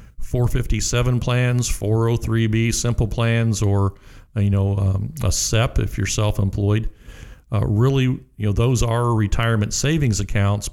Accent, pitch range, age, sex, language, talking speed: American, 105-120 Hz, 50-69, male, English, 125 wpm